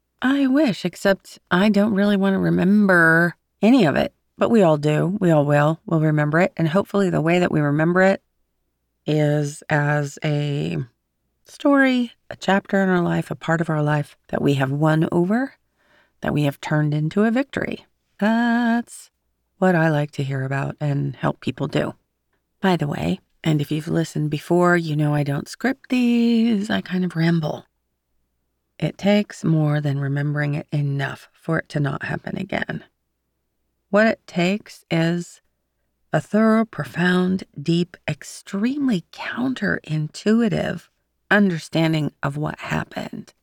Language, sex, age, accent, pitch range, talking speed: English, female, 30-49, American, 150-200 Hz, 155 wpm